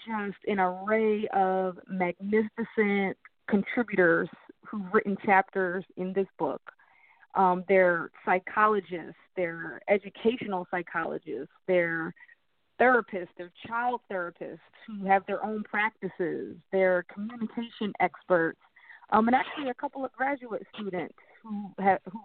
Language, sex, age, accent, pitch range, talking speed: English, female, 30-49, American, 190-230 Hz, 110 wpm